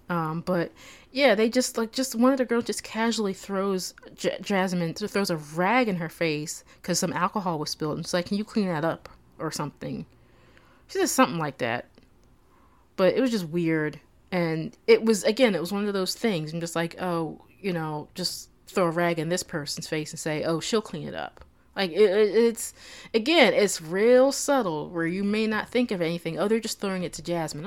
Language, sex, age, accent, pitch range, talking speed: English, female, 30-49, American, 165-230 Hz, 215 wpm